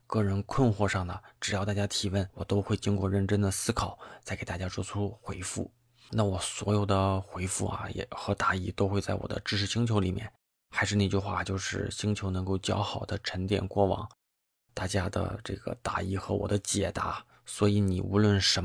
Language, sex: Chinese, male